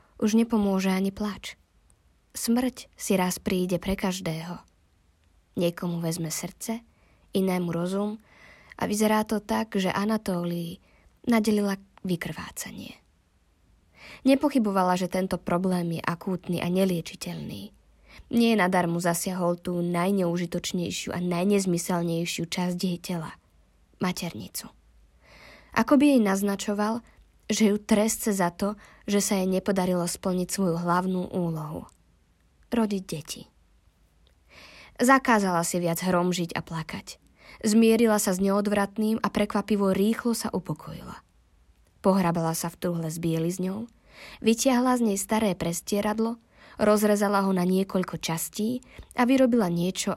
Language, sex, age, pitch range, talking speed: Slovak, female, 20-39, 170-210 Hz, 115 wpm